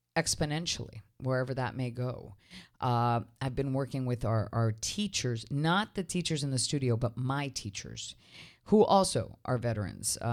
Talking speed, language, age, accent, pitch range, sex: 150 wpm, English, 40-59, American, 115-145 Hz, female